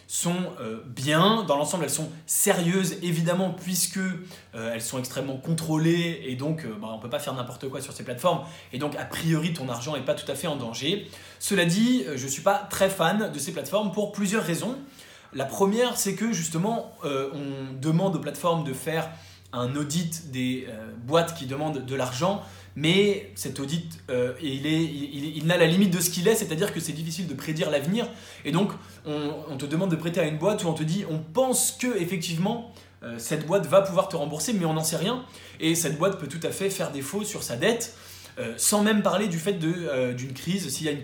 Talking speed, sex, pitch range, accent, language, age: 225 wpm, male, 140-190 Hz, French, English, 20-39